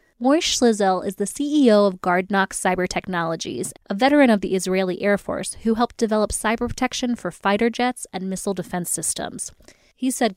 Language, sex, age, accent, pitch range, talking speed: English, female, 20-39, American, 185-220 Hz, 175 wpm